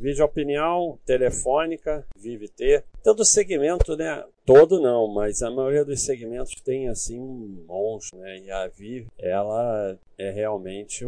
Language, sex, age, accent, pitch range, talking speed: Portuguese, male, 40-59, Brazilian, 100-130 Hz, 135 wpm